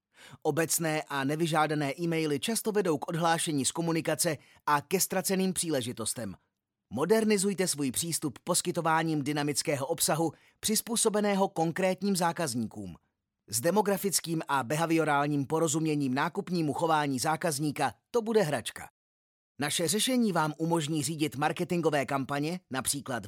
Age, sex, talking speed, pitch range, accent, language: 30-49, male, 110 wpm, 140-175 Hz, native, Czech